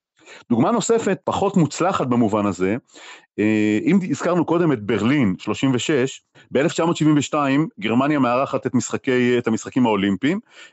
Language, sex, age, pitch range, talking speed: Hebrew, male, 40-59, 115-155 Hz, 105 wpm